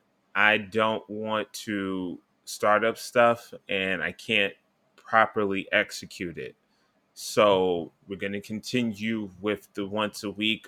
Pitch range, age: 95-110 Hz, 20-39